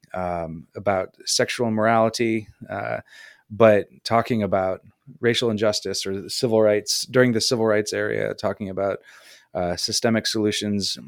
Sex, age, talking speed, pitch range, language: male, 20-39, 125 wpm, 90-110 Hz, English